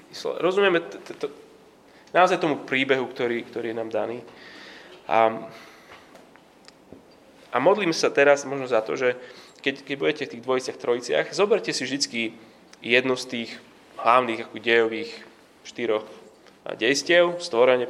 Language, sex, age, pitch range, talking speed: Slovak, male, 20-39, 115-165 Hz, 135 wpm